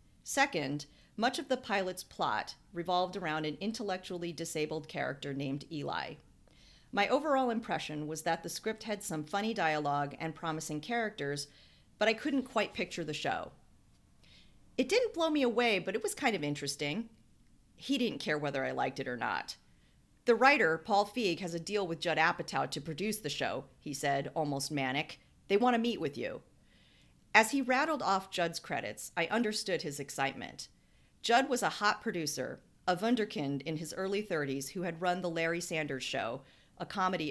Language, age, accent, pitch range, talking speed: English, 40-59, American, 150-210 Hz, 175 wpm